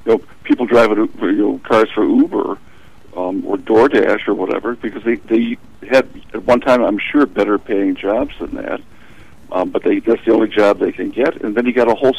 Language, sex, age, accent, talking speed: English, male, 60-79, American, 215 wpm